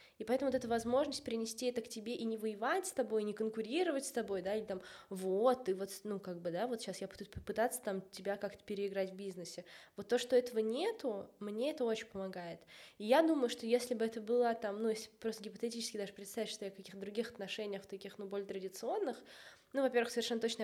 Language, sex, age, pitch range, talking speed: Russian, female, 20-39, 195-250 Hz, 220 wpm